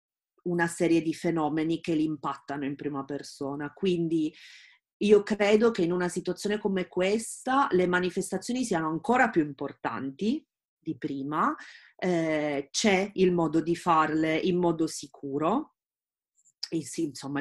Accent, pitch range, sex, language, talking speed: native, 155-200 Hz, female, Italian, 130 wpm